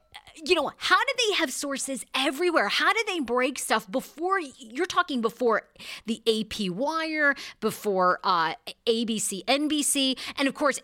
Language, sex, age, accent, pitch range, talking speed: English, female, 40-59, American, 185-245 Hz, 150 wpm